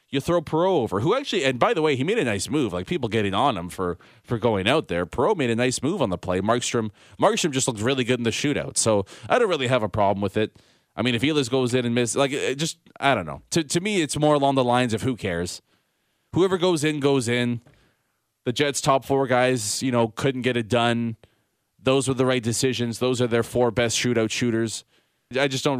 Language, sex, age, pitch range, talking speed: English, male, 30-49, 110-135 Hz, 245 wpm